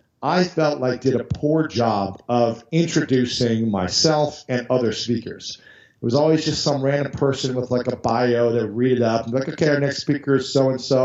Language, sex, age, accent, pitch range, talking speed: English, male, 50-69, American, 115-150 Hz, 200 wpm